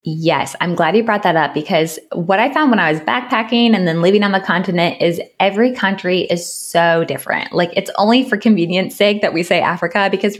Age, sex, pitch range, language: 20-39, female, 160-210 Hz, English